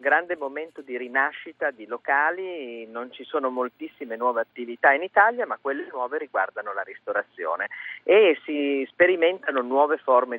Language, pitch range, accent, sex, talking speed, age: Italian, 120-165 Hz, native, male, 145 wpm, 40-59